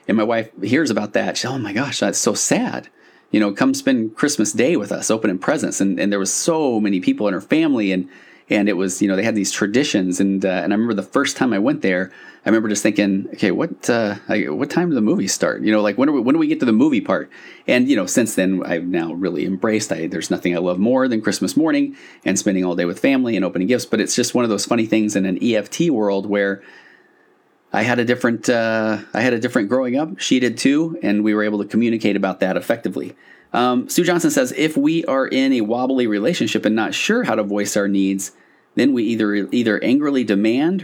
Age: 30-49